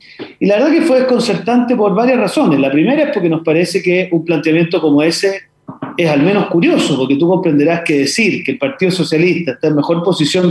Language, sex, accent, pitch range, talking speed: Spanish, male, Argentinian, 165-230 Hz, 210 wpm